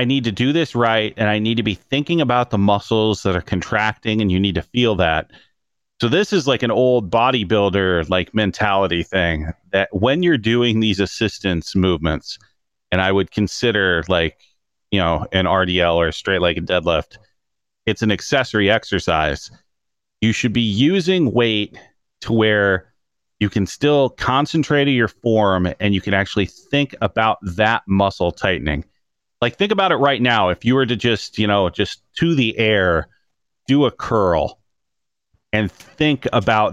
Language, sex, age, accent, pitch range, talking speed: English, male, 30-49, American, 95-120 Hz, 175 wpm